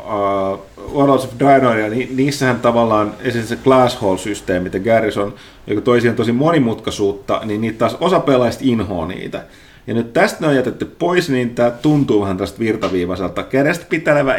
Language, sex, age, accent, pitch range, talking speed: Finnish, male, 30-49, native, 95-125 Hz, 160 wpm